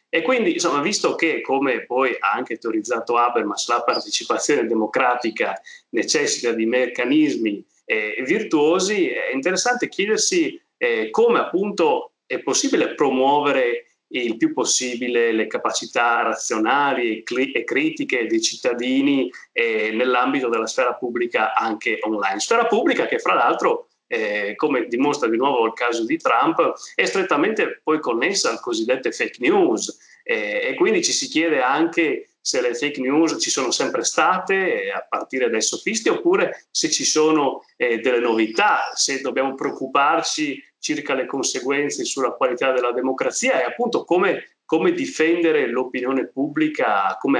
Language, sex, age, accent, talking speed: Italian, male, 30-49, native, 140 wpm